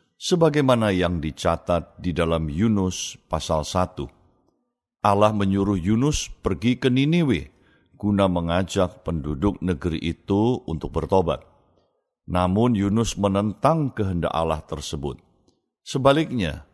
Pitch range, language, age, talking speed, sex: 85-110 Hz, Indonesian, 60-79, 100 wpm, male